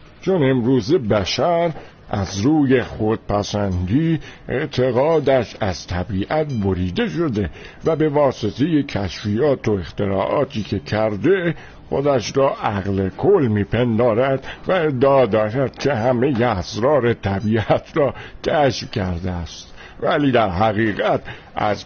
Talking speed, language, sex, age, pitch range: 105 wpm, Persian, male, 60-79, 105-145 Hz